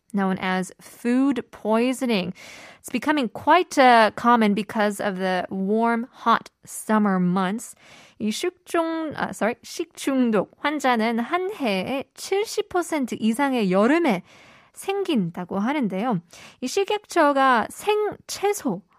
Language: Korean